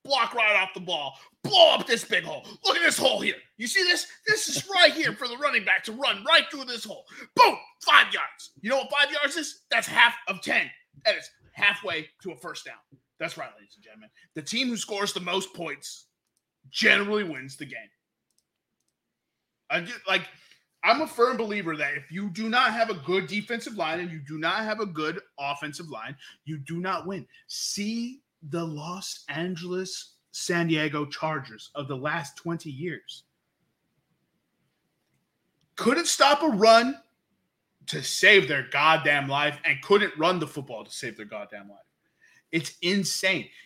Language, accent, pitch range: English, American, 150-225 Hz